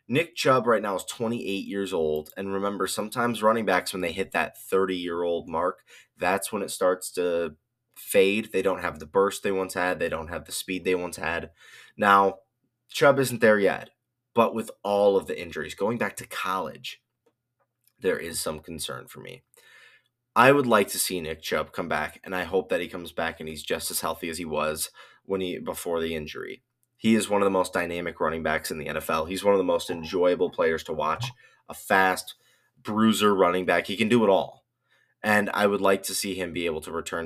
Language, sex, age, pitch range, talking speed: English, male, 20-39, 90-115 Hz, 215 wpm